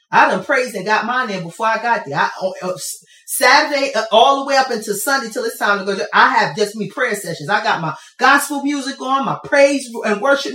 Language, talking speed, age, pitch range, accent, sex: English, 220 wpm, 30-49, 205-300 Hz, American, female